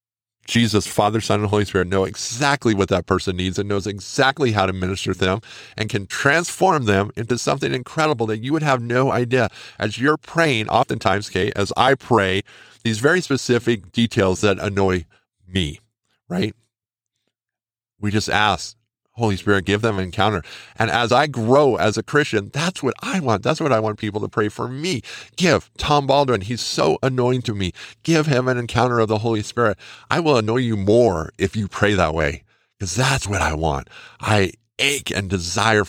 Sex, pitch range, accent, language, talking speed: male, 95-120 Hz, American, English, 190 wpm